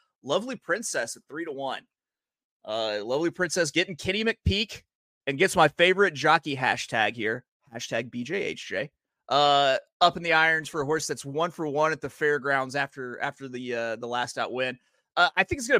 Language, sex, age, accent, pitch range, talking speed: English, male, 30-49, American, 125-175 Hz, 185 wpm